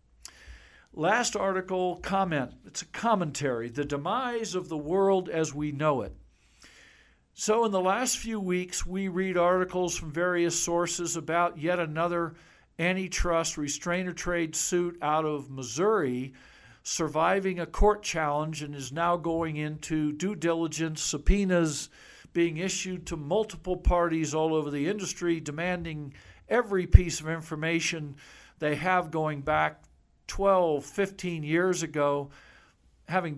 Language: English